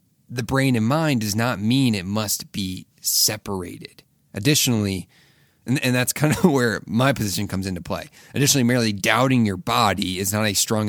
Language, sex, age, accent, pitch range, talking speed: English, male, 30-49, American, 95-125 Hz, 175 wpm